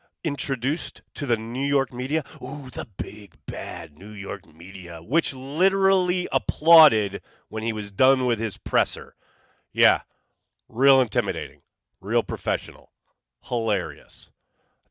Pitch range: 100-155 Hz